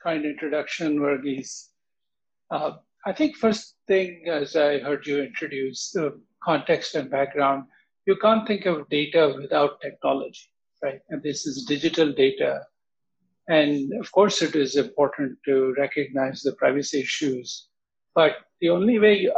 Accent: Indian